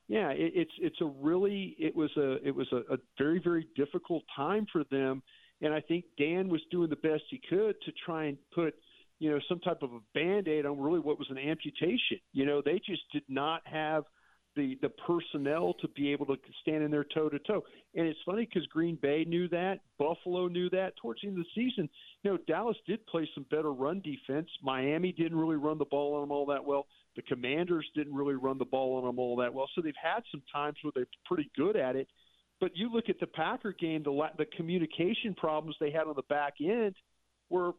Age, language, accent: 50-69, English, American